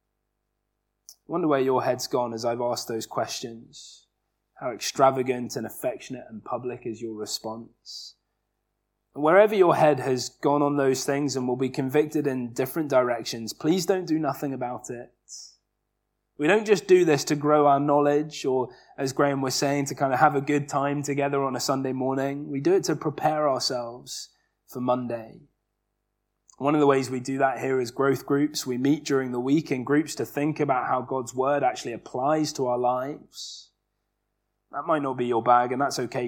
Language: English